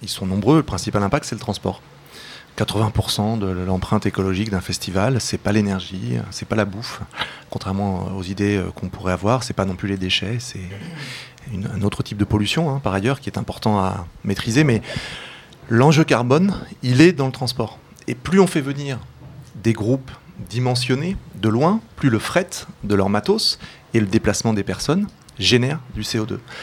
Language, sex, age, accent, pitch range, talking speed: French, male, 30-49, French, 100-130 Hz, 190 wpm